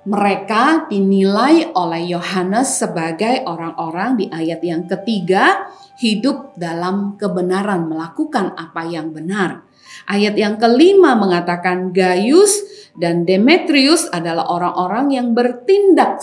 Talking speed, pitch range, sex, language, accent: 105 wpm, 185-290 Hz, female, Indonesian, native